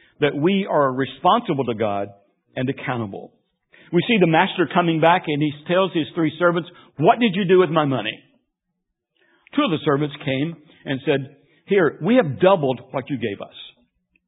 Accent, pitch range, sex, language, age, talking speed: American, 130-175 Hz, male, English, 60-79, 175 wpm